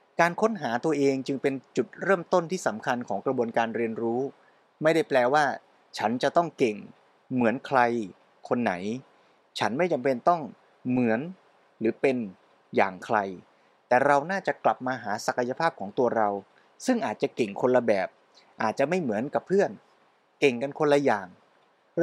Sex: male